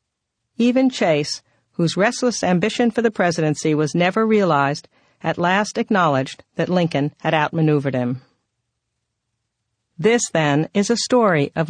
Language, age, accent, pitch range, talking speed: English, 50-69, American, 160-210 Hz, 130 wpm